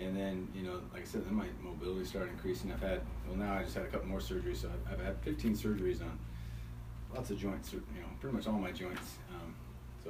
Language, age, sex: English, 30-49, male